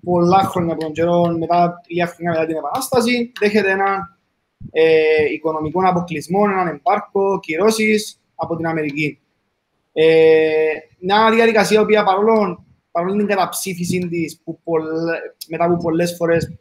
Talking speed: 110 wpm